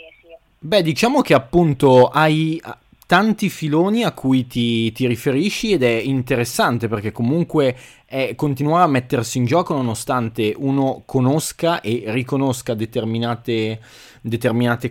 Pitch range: 115-145 Hz